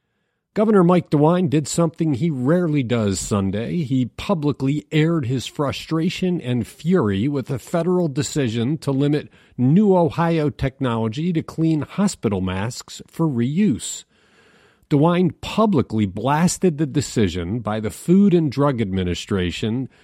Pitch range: 115-170 Hz